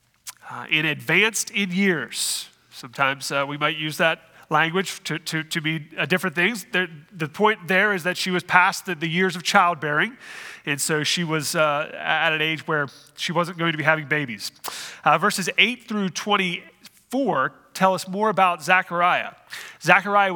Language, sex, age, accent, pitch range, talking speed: English, male, 30-49, American, 155-200 Hz, 175 wpm